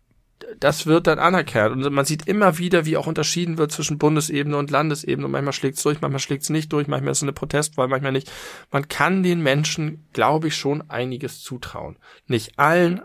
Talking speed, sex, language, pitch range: 200 wpm, male, German, 120-150 Hz